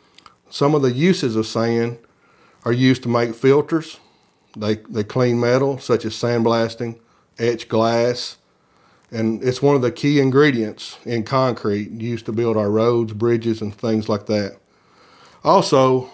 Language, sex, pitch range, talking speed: English, male, 110-125 Hz, 155 wpm